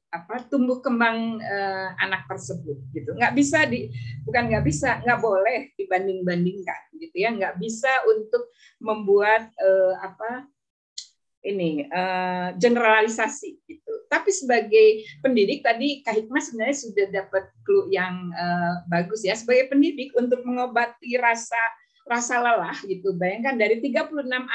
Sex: female